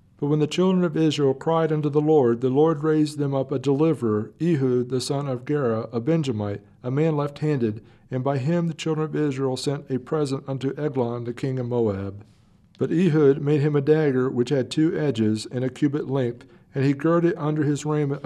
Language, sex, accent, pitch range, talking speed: English, male, American, 125-155 Hz, 210 wpm